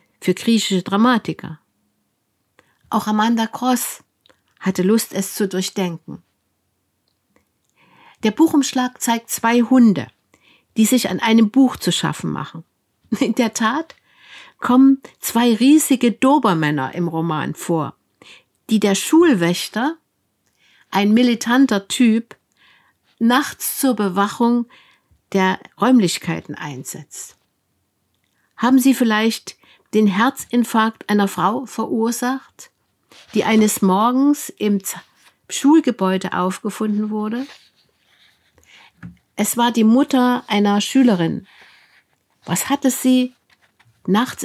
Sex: female